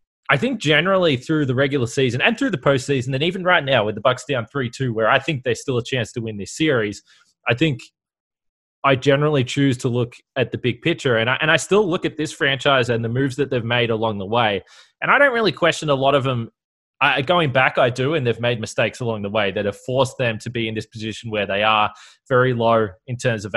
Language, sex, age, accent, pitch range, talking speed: English, male, 20-39, Australian, 115-140 Hz, 245 wpm